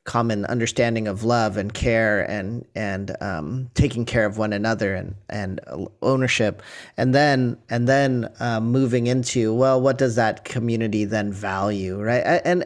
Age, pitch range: 30-49, 110-135 Hz